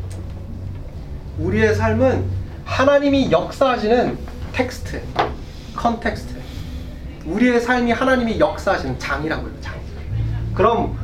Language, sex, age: Korean, male, 30-49